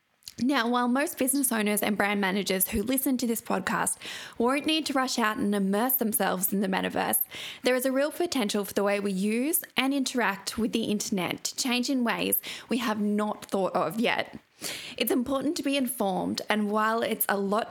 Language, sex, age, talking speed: English, female, 10-29, 200 wpm